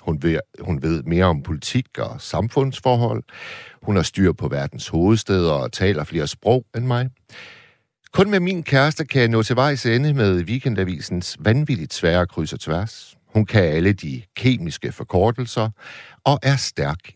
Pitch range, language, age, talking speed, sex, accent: 95-130 Hz, Danish, 60-79, 165 wpm, male, native